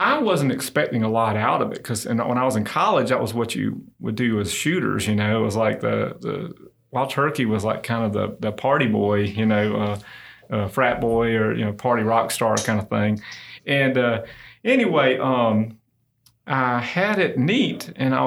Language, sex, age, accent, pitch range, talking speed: English, male, 30-49, American, 110-140 Hz, 215 wpm